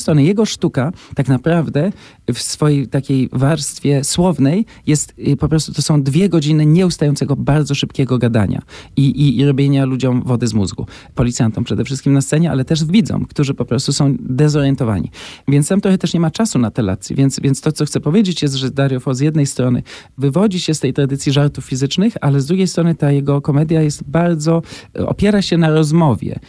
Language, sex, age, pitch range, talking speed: Polish, male, 40-59, 140-180 Hz, 195 wpm